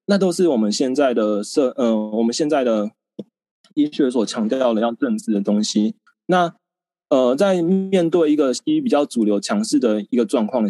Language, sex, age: Chinese, male, 20-39